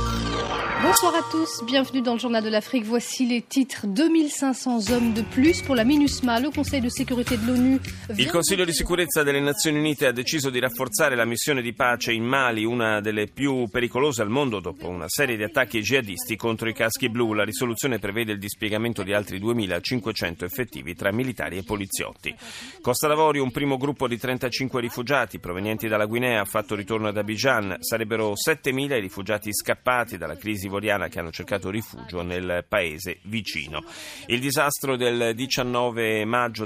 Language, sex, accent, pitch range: Italian, male, native, 105-140 Hz